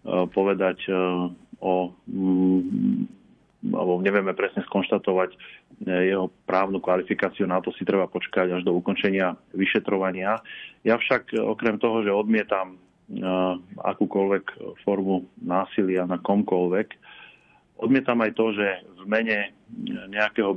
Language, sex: Slovak, male